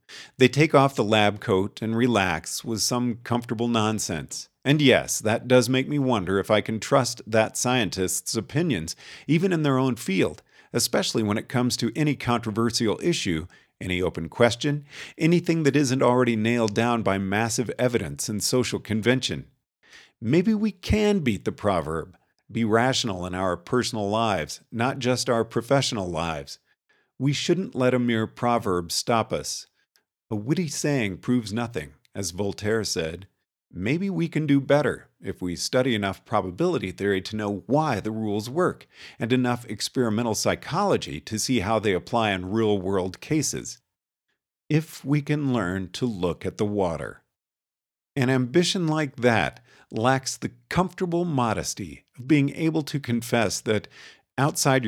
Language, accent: English, American